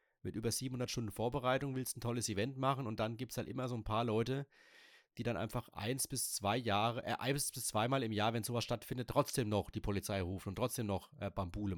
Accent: German